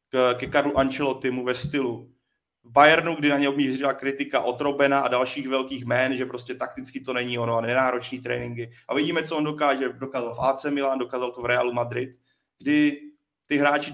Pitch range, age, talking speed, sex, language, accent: 120-135 Hz, 30-49, 180 wpm, male, Czech, native